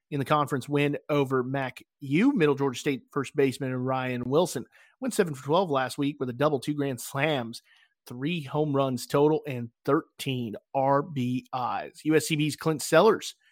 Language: English